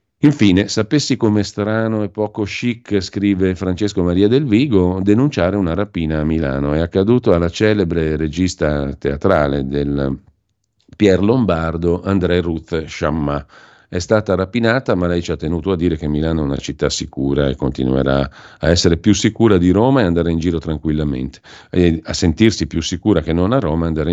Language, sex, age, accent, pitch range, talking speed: Italian, male, 50-69, native, 75-105 Hz, 170 wpm